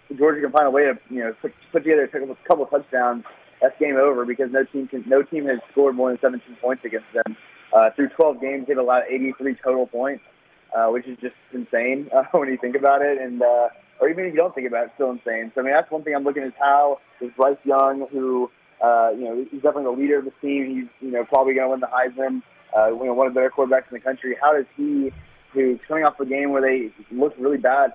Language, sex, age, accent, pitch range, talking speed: English, male, 20-39, American, 120-140 Hz, 265 wpm